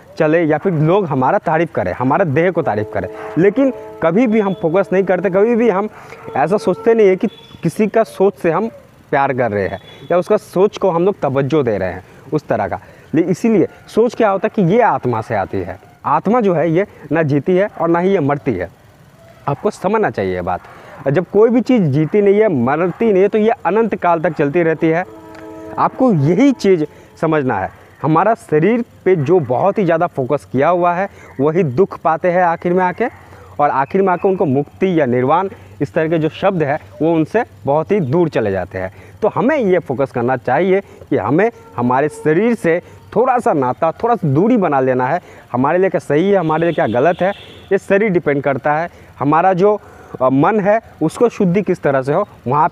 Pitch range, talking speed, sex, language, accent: 140-200 Hz, 215 wpm, male, Hindi, native